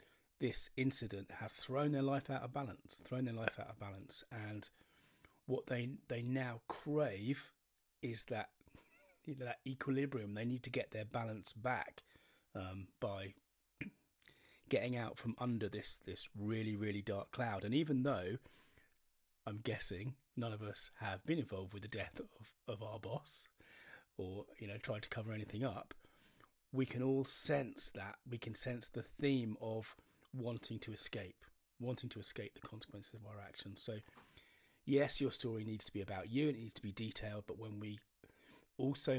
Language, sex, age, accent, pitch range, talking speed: English, male, 30-49, British, 105-130 Hz, 175 wpm